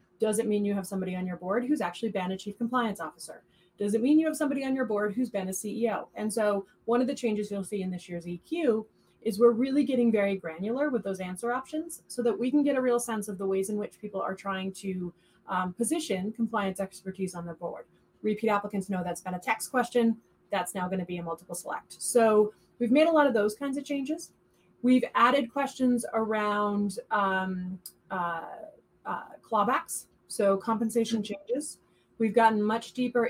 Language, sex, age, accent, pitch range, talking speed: English, female, 30-49, American, 185-230 Hz, 210 wpm